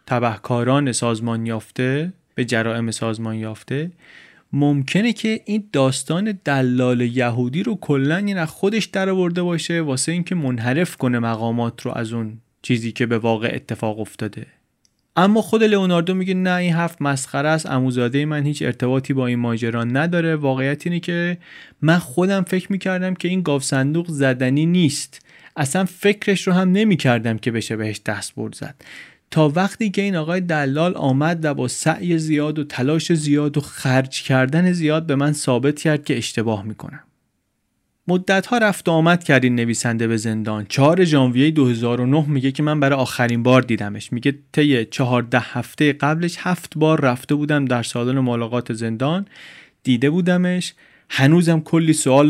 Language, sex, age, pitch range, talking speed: Persian, male, 30-49, 125-170 Hz, 155 wpm